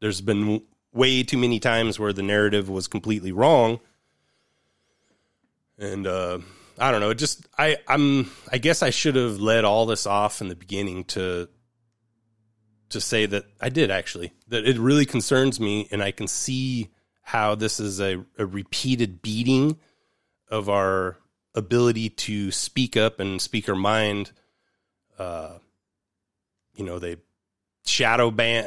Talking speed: 150 wpm